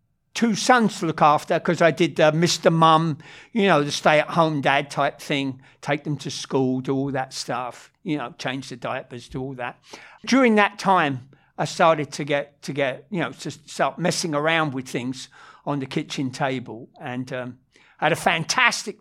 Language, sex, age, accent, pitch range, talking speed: English, male, 50-69, British, 135-180 Hz, 190 wpm